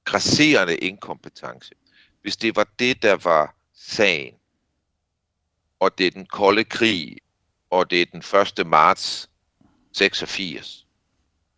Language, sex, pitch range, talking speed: Danish, male, 80-95 Hz, 115 wpm